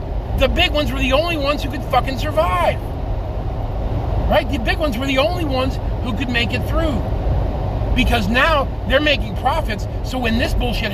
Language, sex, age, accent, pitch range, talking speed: English, male, 40-59, American, 90-105 Hz, 180 wpm